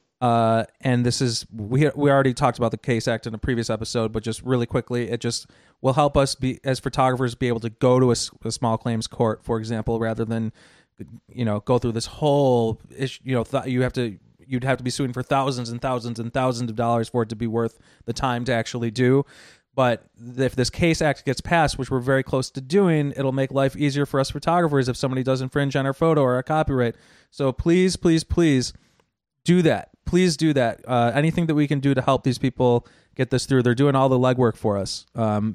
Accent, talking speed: American, 230 wpm